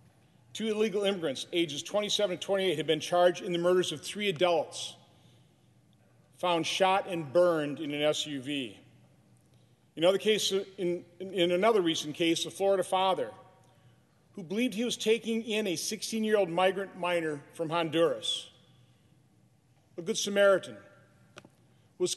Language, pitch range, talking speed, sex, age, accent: English, 155-200 Hz, 130 wpm, male, 40-59, American